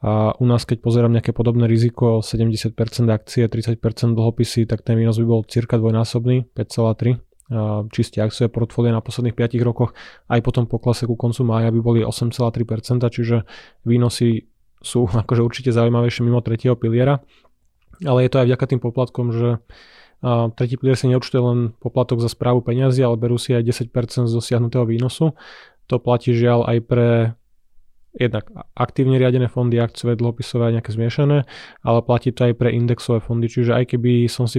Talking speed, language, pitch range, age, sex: 170 wpm, Slovak, 115-125 Hz, 20-39, male